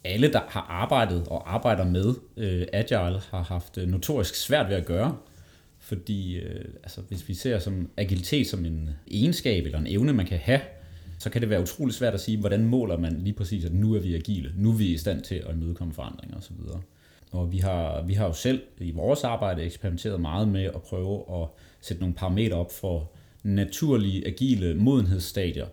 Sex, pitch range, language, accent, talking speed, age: male, 90-110 Hz, Danish, native, 200 wpm, 30-49